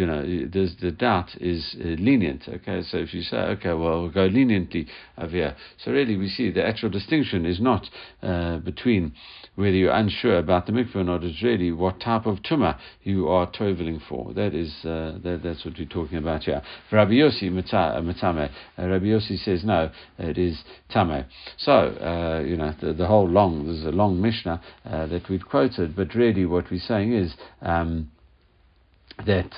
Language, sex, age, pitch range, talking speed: English, male, 60-79, 85-100 Hz, 185 wpm